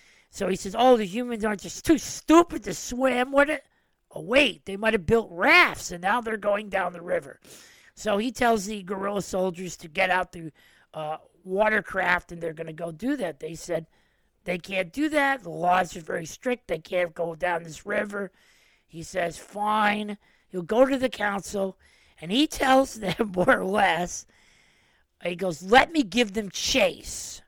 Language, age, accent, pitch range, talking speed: English, 40-59, American, 175-225 Hz, 185 wpm